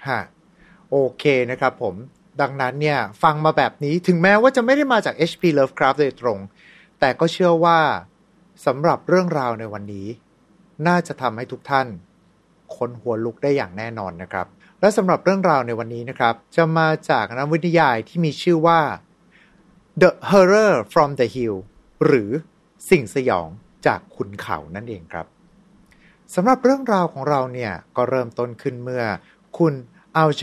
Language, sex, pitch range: Thai, male, 130-185 Hz